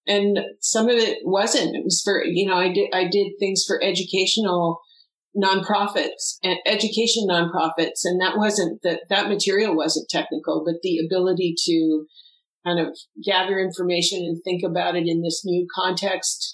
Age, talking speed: 50-69, 165 wpm